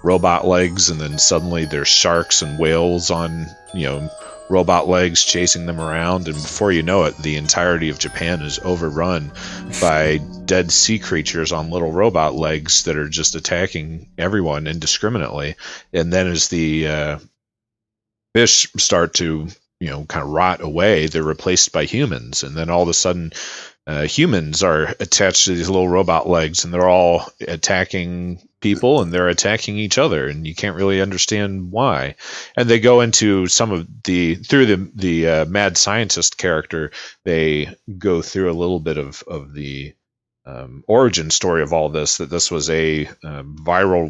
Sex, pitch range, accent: male, 80-95 Hz, American